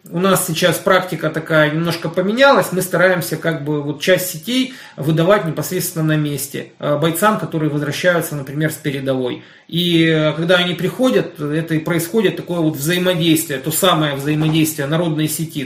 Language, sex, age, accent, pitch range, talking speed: Russian, male, 30-49, native, 150-180 Hz, 150 wpm